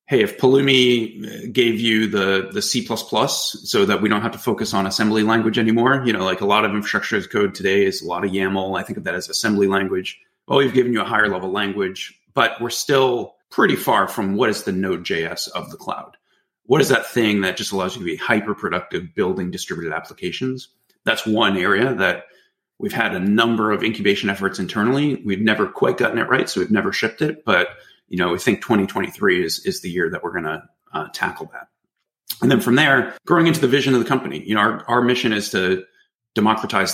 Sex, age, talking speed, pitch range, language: male, 30-49, 220 wpm, 95-120 Hz, English